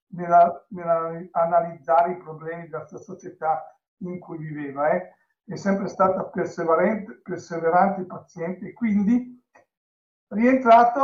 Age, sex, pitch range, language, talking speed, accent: 60-79, male, 175-215 Hz, Italian, 105 wpm, native